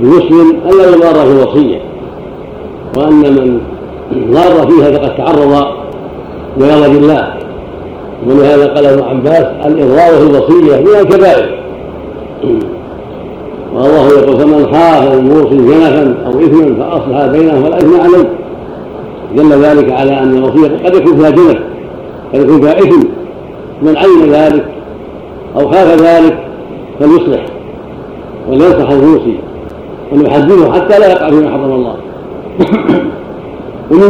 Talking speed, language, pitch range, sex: 110 wpm, Arabic, 140-195 Hz, male